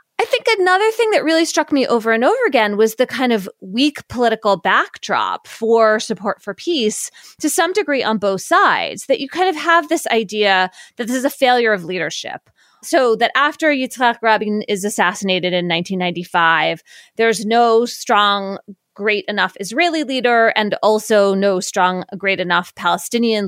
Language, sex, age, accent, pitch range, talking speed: English, female, 30-49, American, 195-270 Hz, 170 wpm